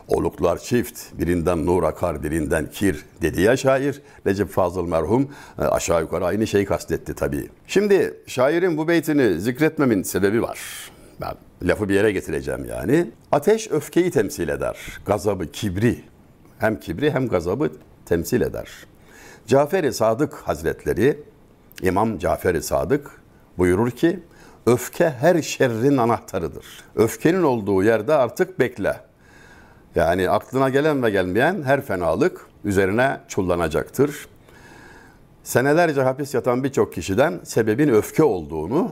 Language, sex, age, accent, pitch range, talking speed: Turkish, male, 60-79, native, 110-145 Hz, 120 wpm